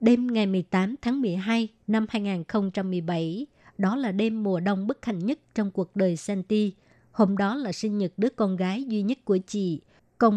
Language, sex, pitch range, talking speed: Vietnamese, male, 185-220 Hz, 185 wpm